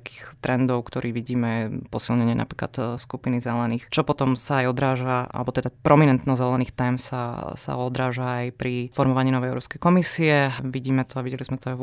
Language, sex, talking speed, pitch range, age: Slovak, female, 180 wpm, 120-130 Hz, 20-39